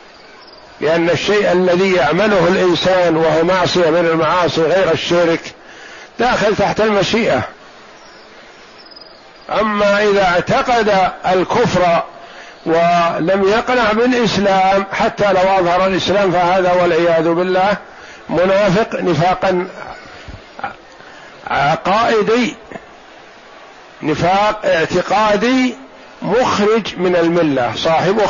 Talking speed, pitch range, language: 80 wpm, 170-200 Hz, Arabic